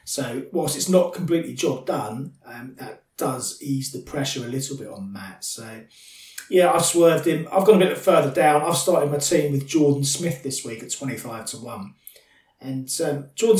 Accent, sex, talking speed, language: British, male, 200 wpm, English